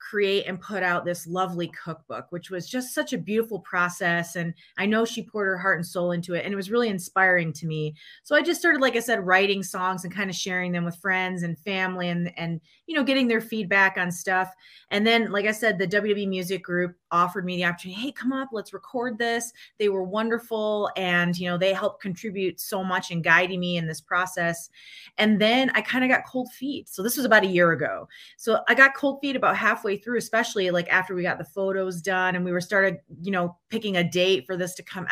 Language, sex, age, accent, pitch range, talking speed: English, female, 30-49, American, 180-220 Hz, 240 wpm